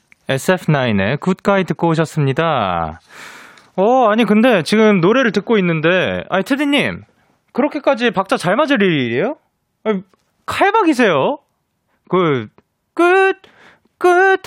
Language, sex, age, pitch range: Korean, male, 20-39, 145-220 Hz